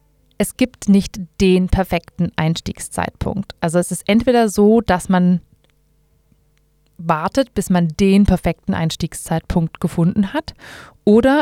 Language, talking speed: German, 115 wpm